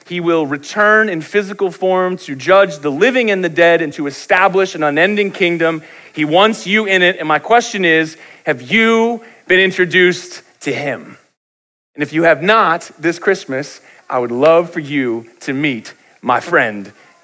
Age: 30-49